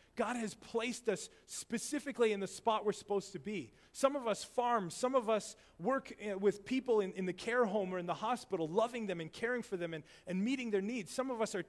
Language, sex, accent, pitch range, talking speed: English, male, American, 160-220 Hz, 235 wpm